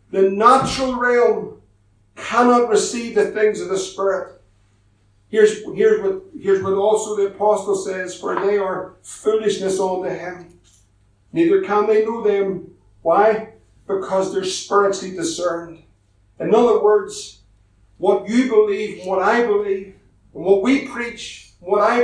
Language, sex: English, male